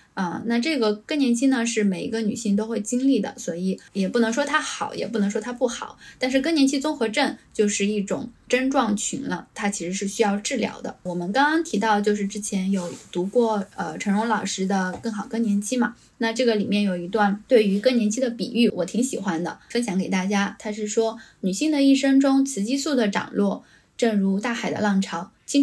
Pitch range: 200-250 Hz